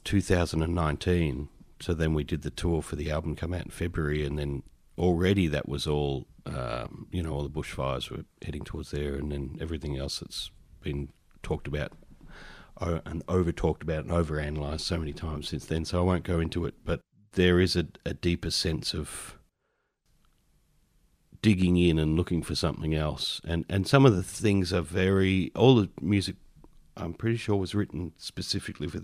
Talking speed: 185 wpm